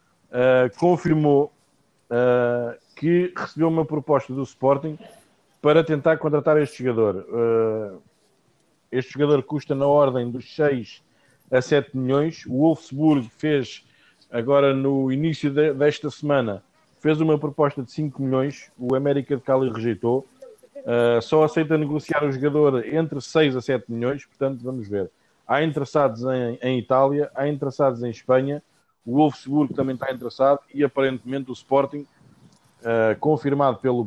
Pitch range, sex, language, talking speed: 120-150 Hz, male, Portuguese, 130 wpm